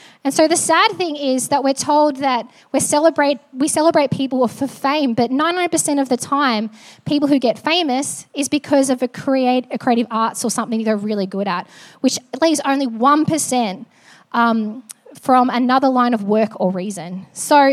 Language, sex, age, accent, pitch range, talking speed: English, female, 10-29, Australian, 235-300 Hz, 185 wpm